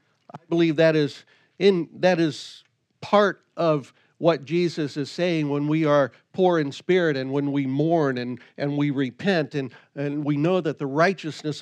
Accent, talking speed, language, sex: American, 175 wpm, English, male